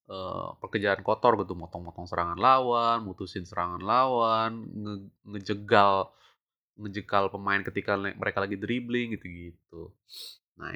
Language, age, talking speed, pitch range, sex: Indonesian, 20-39, 125 wpm, 95-120 Hz, male